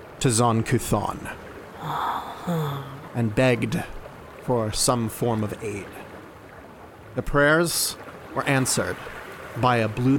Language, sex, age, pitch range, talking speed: English, male, 30-49, 110-130 Hz, 95 wpm